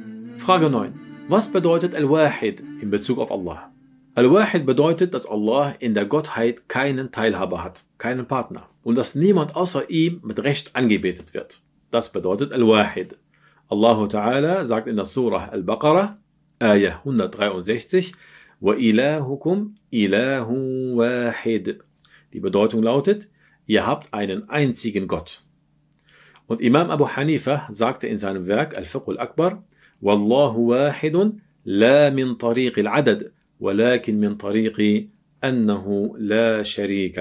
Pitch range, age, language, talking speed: 110-155 Hz, 40-59, German, 120 wpm